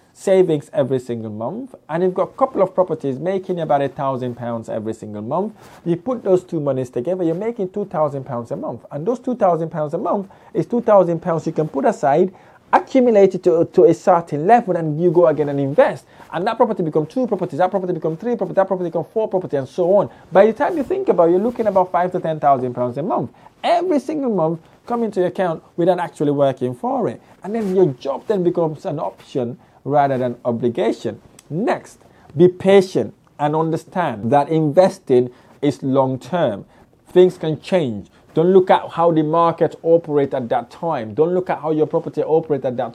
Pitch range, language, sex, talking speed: 145-195 Hz, English, male, 210 wpm